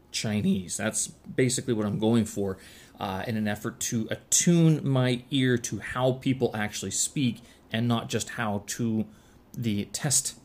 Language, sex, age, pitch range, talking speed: English, male, 20-39, 100-125 Hz, 155 wpm